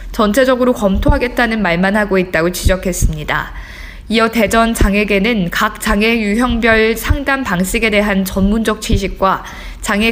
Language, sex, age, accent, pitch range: Korean, female, 20-39, native, 195-245 Hz